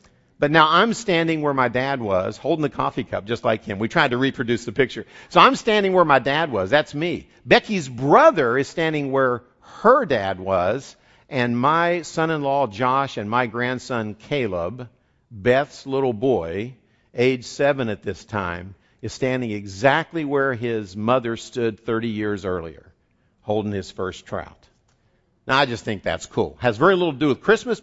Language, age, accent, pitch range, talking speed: English, 50-69, American, 115-170 Hz, 175 wpm